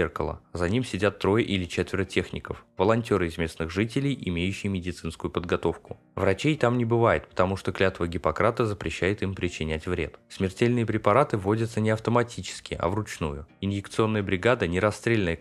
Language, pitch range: Russian, 90-110 Hz